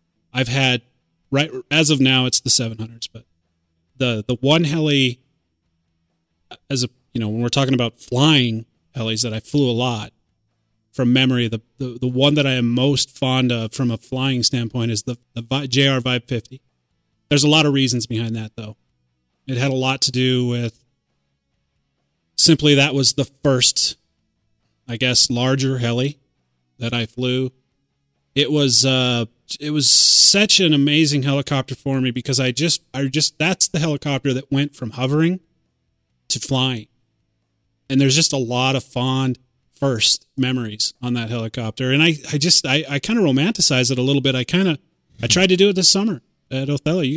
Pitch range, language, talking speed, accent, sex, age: 115-140 Hz, English, 180 wpm, American, male, 30-49